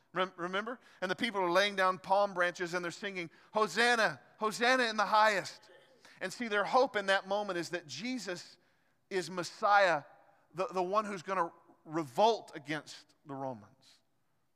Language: English